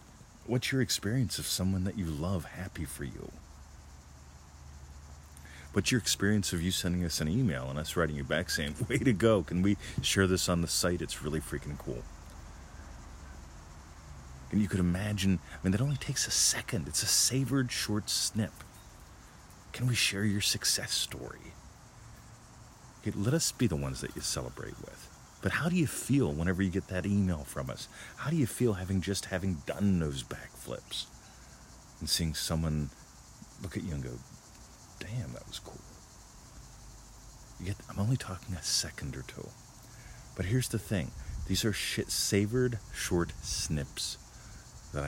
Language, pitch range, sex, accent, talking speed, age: English, 75-105 Hz, male, American, 160 wpm, 40-59